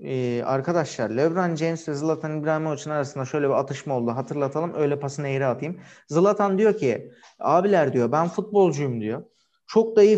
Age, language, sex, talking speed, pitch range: 40-59, Turkish, male, 160 wpm, 140-170 Hz